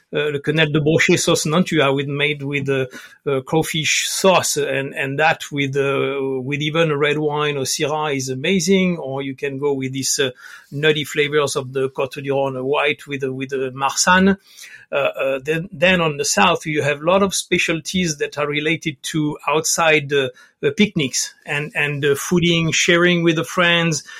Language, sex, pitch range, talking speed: English, male, 140-165 Hz, 195 wpm